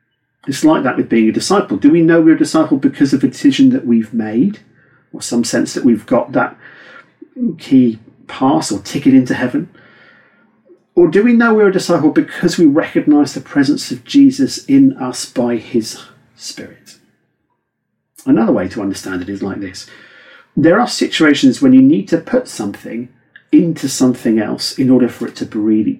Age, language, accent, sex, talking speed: 40-59, English, British, male, 180 wpm